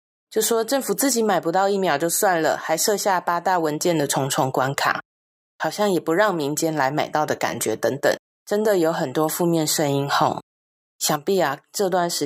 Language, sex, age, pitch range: Chinese, female, 20-39, 155-210 Hz